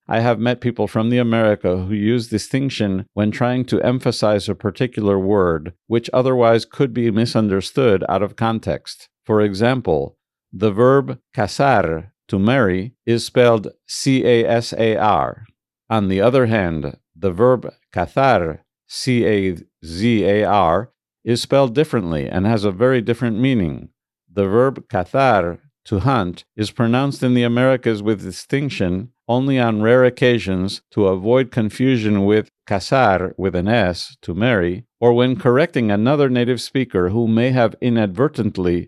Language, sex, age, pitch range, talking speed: English, male, 50-69, 100-125 Hz, 135 wpm